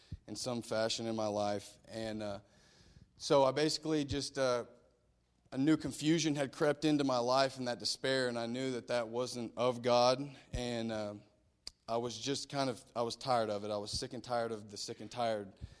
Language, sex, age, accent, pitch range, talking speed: English, male, 30-49, American, 110-130 Hz, 205 wpm